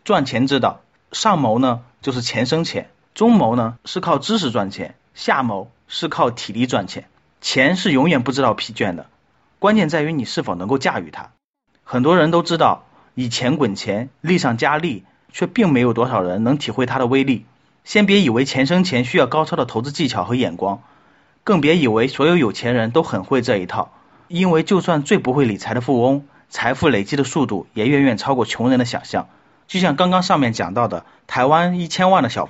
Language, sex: Chinese, male